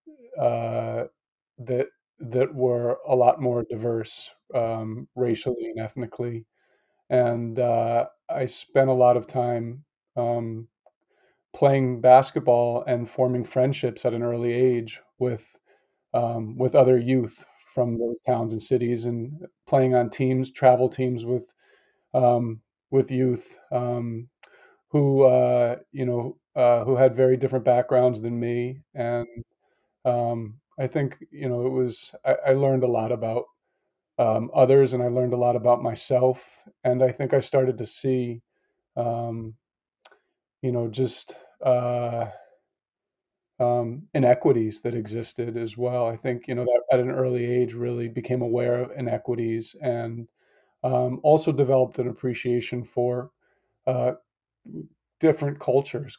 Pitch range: 120-130 Hz